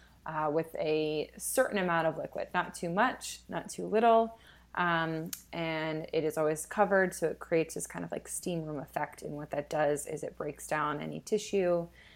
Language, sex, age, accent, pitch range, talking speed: English, female, 20-39, American, 150-175 Hz, 190 wpm